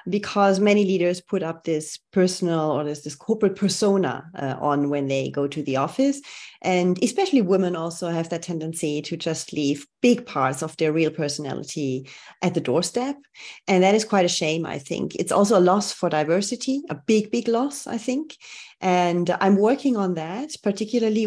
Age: 30-49